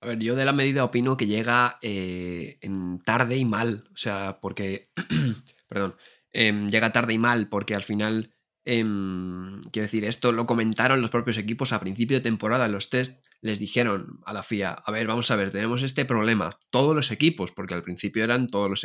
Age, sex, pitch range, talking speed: 20-39, male, 100-120 Hz, 205 wpm